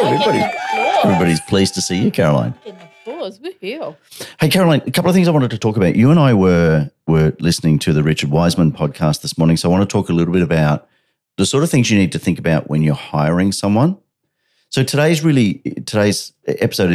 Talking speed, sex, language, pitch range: 205 wpm, male, English, 80-110 Hz